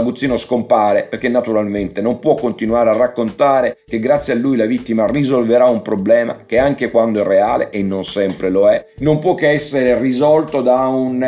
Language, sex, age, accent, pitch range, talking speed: Italian, male, 50-69, native, 110-130 Hz, 185 wpm